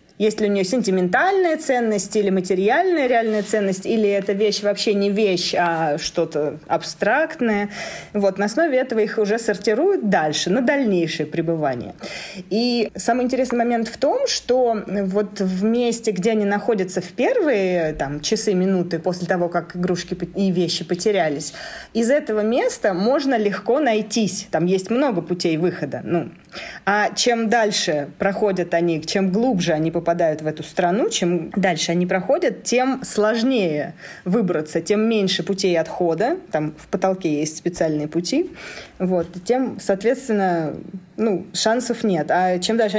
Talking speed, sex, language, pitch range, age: 145 wpm, female, Russian, 175-225 Hz, 20-39